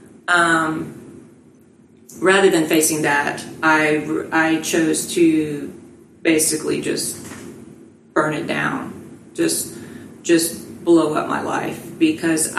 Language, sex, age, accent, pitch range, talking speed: English, female, 30-49, American, 160-195 Hz, 100 wpm